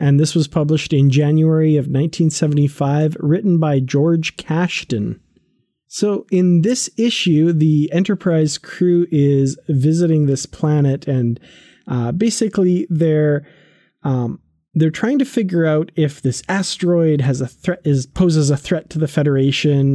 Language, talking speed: English, 140 wpm